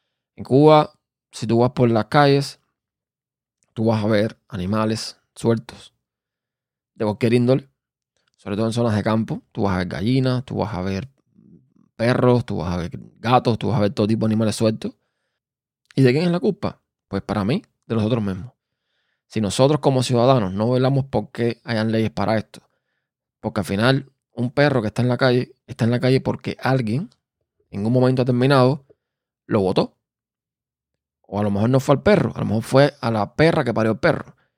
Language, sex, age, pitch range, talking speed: Spanish, male, 20-39, 110-135 Hz, 195 wpm